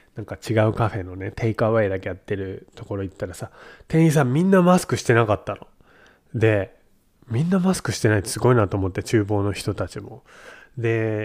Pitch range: 100-120 Hz